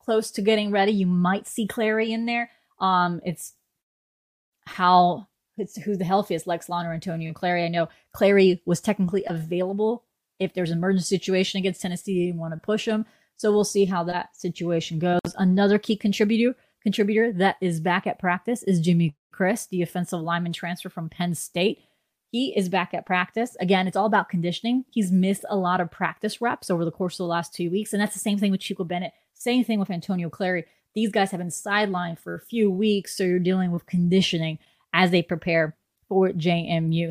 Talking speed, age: 200 wpm, 20-39